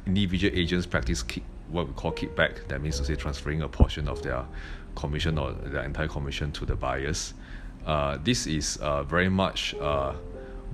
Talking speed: 180 wpm